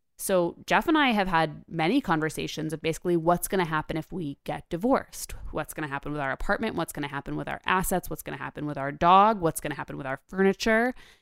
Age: 20-39